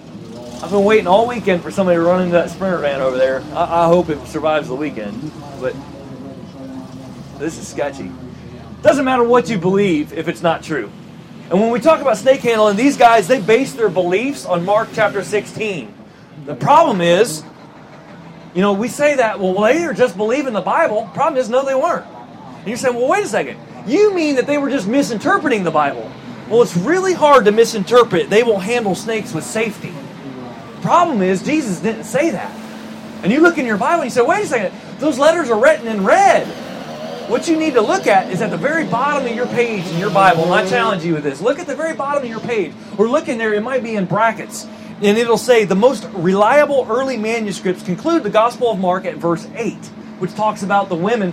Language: English